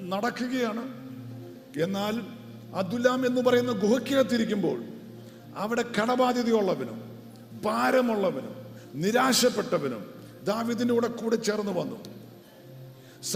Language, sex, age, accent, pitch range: English, male, 50-69, Indian, 155-245 Hz